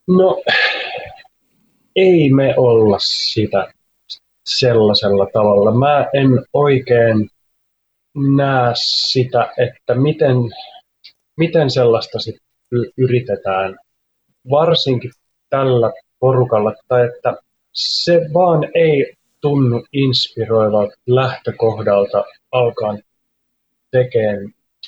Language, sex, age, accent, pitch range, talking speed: Finnish, male, 30-49, native, 110-140 Hz, 75 wpm